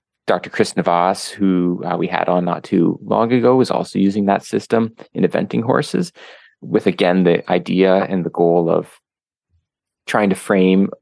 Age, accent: 30-49, American